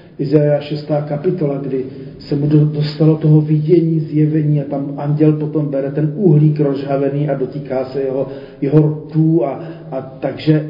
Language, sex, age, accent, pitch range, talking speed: Czech, male, 40-59, native, 140-165 Hz, 150 wpm